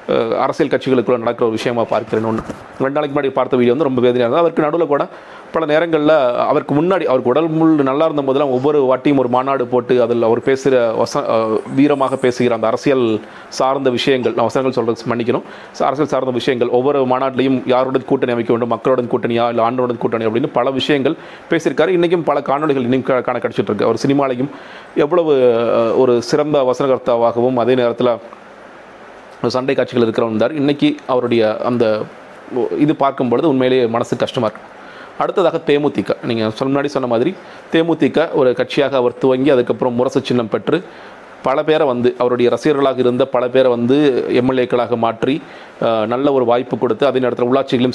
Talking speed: 155 wpm